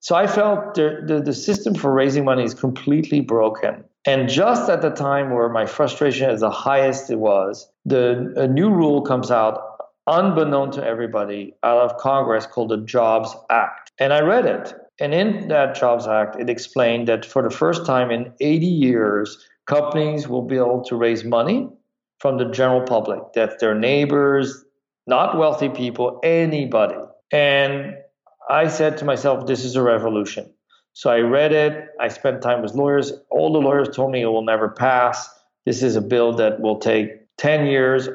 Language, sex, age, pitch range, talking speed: English, male, 50-69, 115-145 Hz, 180 wpm